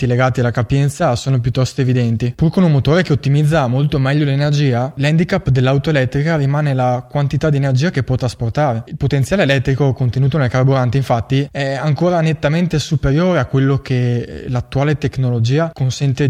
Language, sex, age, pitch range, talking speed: Italian, male, 20-39, 125-145 Hz, 160 wpm